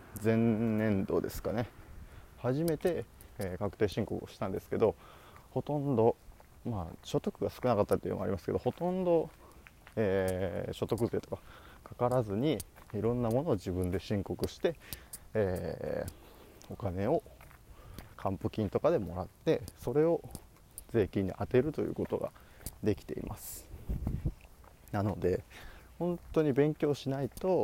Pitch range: 95-130 Hz